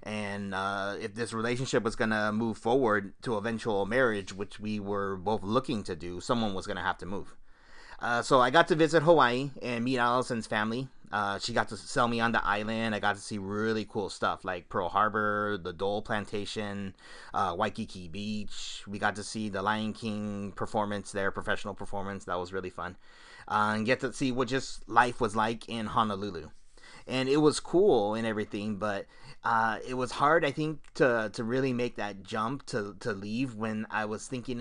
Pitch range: 100-125 Hz